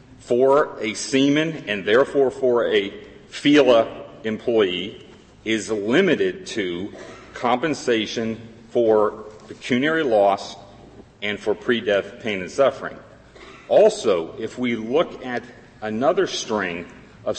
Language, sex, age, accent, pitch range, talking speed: English, male, 40-59, American, 110-135 Hz, 105 wpm